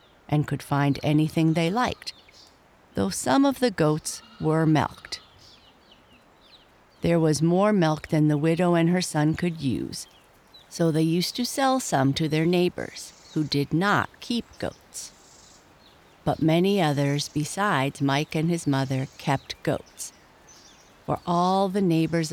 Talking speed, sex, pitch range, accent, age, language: 140 wpm, female, 145-175 Hz, American, 50-69, English